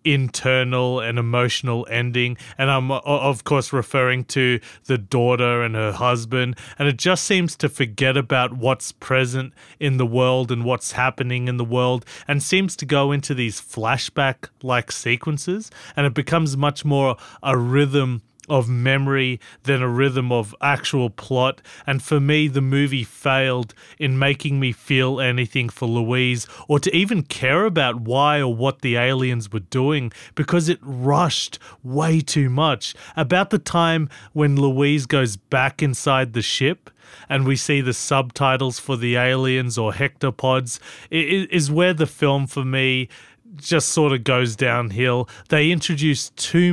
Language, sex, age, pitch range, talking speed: English, male, 30-49, 125-145 Hz, 155 wpm